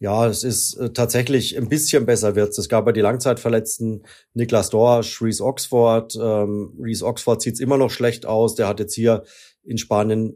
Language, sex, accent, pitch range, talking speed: German, male, German, 105-120 Hz, 185 wpm